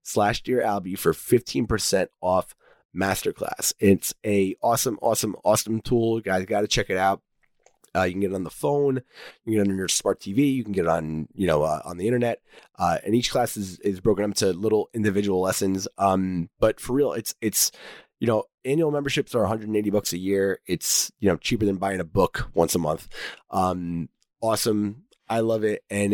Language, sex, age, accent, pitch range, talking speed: English, male, 30-49, American, 95-125 Hz, 210 wpm